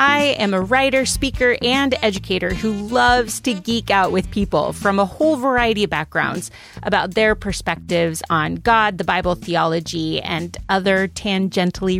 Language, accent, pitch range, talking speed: English, American, 170-230 Hz, 155 wpm